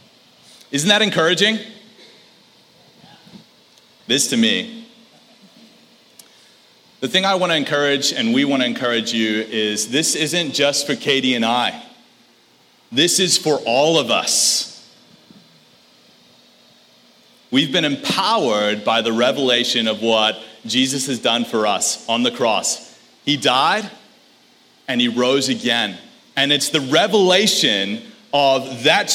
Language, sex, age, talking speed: English, male, 30-49, 125 wpm